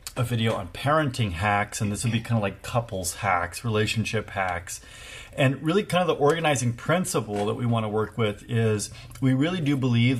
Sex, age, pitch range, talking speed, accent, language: male, 40-59, 110-130 Hz, 200 wpm, American, English